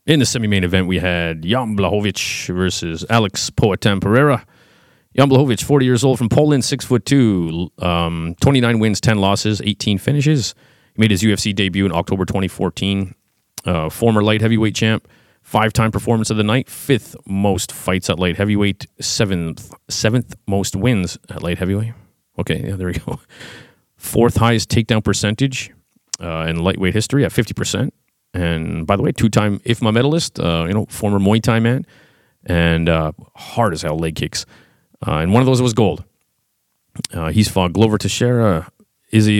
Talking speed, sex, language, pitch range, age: 165 wpm, male, English, 95-120 Hz, 30-49